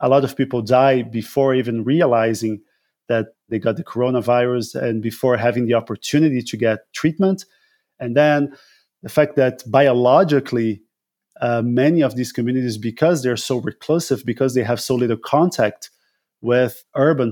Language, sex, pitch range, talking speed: English, male, 115-135 Hz, 150 wpm